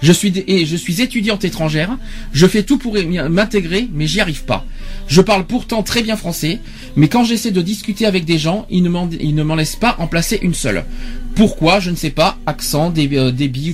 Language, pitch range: French, 155-215 Hz